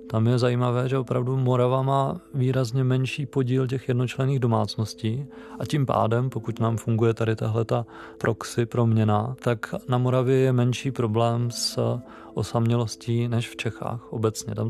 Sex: male